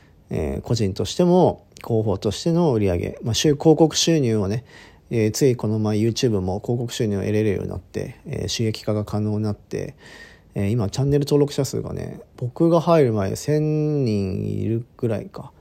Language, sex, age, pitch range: Japanese, male, 40-59, 95-125 Hz